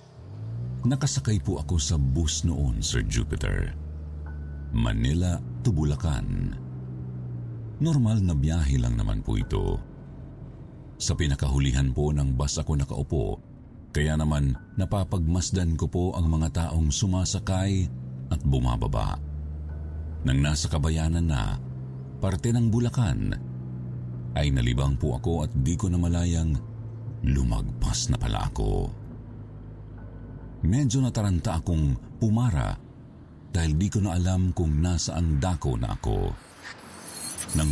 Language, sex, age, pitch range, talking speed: Filipino, male, 50-69, 75-115 Hz, 115 wpm